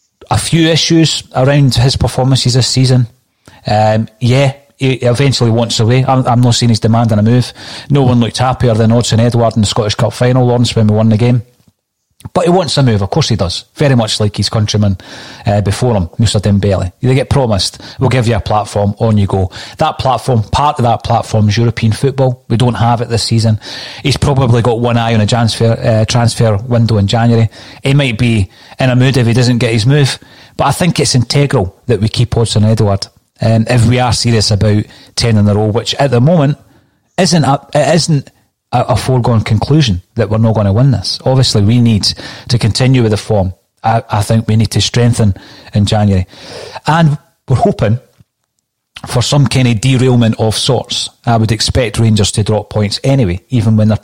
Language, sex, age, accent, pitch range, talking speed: English, male, 30-49, British, 110-130 Hz, 210 wpm